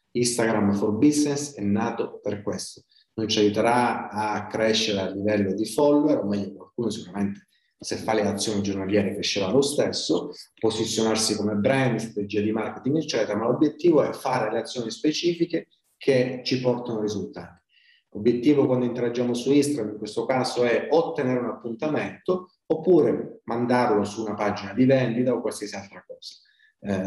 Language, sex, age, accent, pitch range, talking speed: Italian, male, 30-49, native, 105-140 Hz, 155 wpm